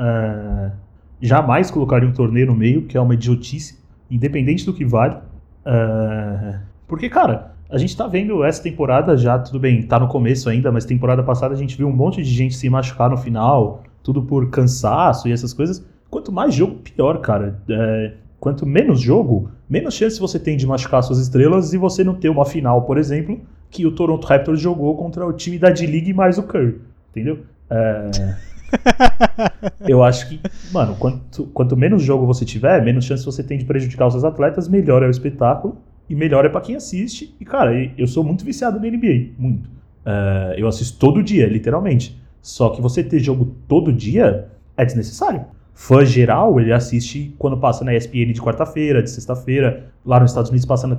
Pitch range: 120-155 Hz